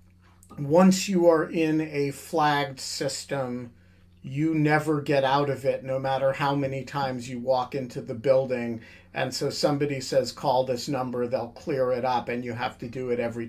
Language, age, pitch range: English, 50-69, 115-150 Hz